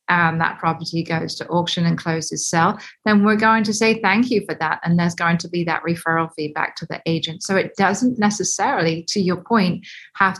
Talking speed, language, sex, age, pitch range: 215 wpm, English, female, 30-49, 170-200 Hz